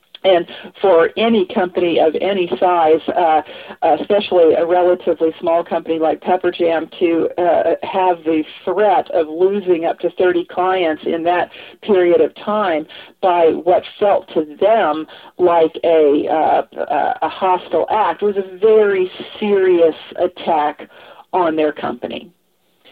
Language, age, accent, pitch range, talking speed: English, 50-69, American, 170-195 Hz, 135 wpm